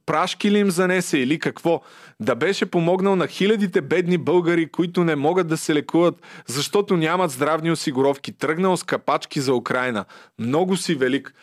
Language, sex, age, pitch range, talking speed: Bulgarian, male, 30-49, 135-175 Hz, 165 wpm